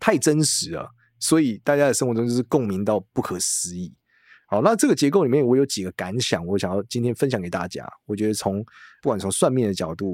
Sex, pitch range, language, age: male, 95-135 Hz, Chinese, 20-39